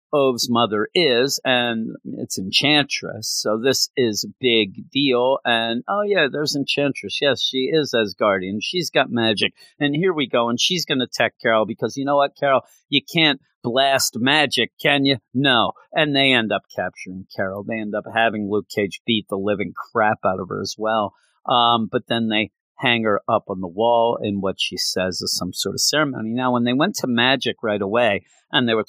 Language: English